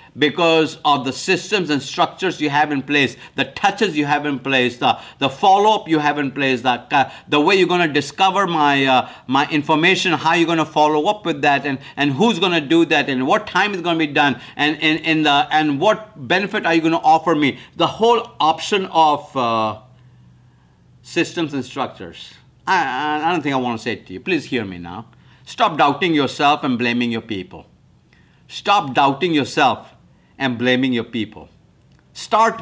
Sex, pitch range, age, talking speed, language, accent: male, 135-170 Hz, 60-79, 200 wpm, English, Indian